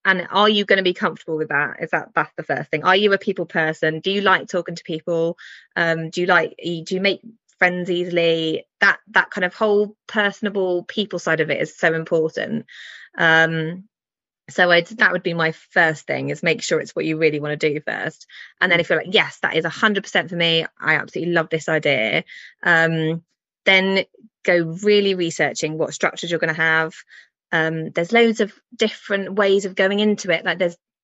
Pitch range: 160-190 Hz